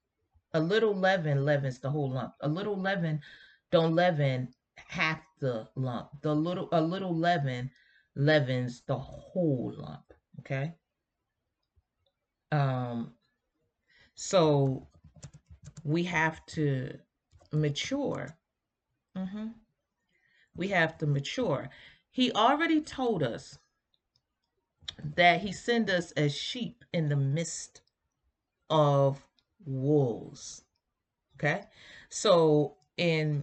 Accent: American